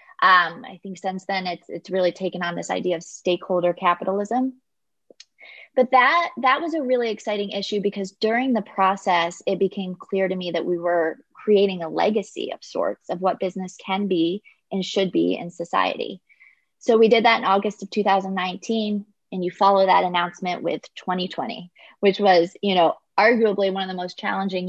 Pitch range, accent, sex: 180-210 Hz, American, female